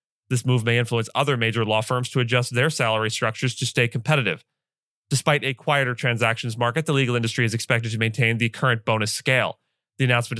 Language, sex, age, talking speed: English, male, 30-49, 195 wpm